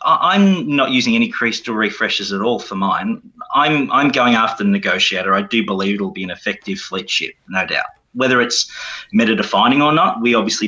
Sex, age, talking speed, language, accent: male, 30-49, 195 wpm, English, Australian